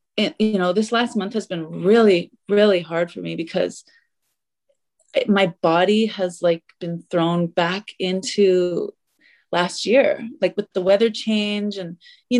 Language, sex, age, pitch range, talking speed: English, female, 30-49, 180-225 Hz, 145 wpm